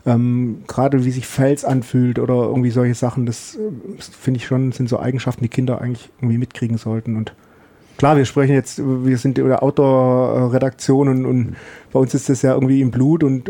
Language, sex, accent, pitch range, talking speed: German, male, German, 130-150 Hz, 200 wpm